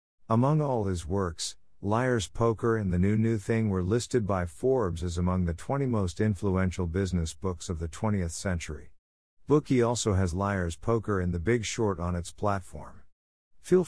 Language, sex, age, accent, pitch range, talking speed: German, male, 50-69, American, 85-110 Hz, 175 wpm